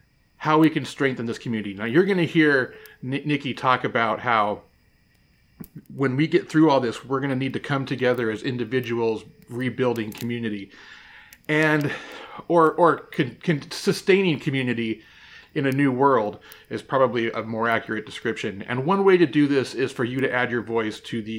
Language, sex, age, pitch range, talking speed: English, male, 30-49, 125-160 Hz, 175 wpm